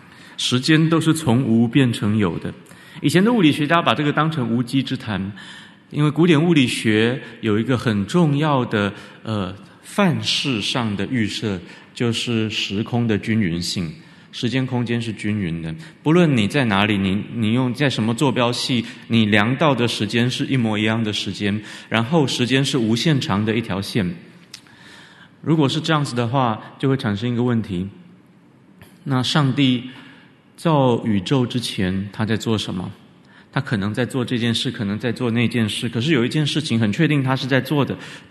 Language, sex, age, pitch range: Chinese, male, 30-49, 105-130 Hz